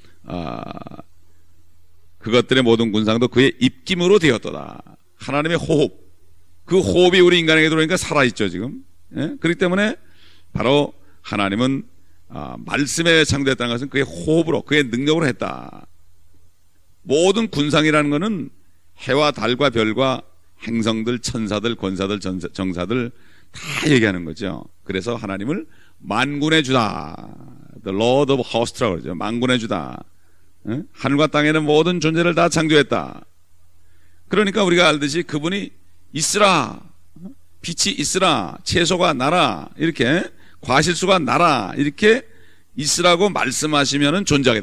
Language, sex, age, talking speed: English, male, 40-59, 105 wpm